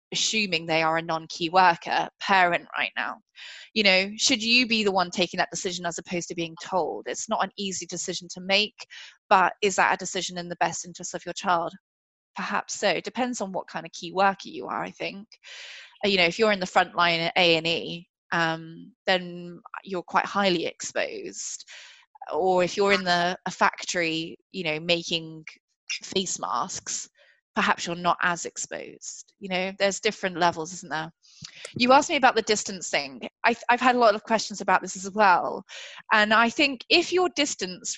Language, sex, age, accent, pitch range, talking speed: English, female, 20-39, British, 175-215 Hz, 195 wpm